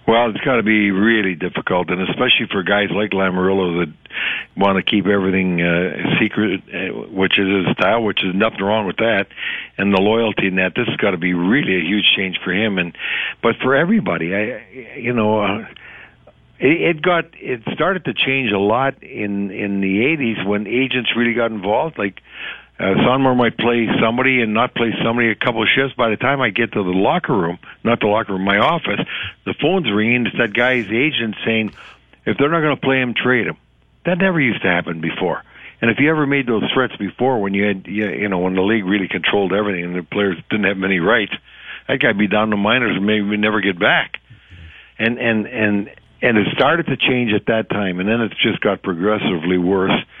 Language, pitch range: English, 95-120 Hz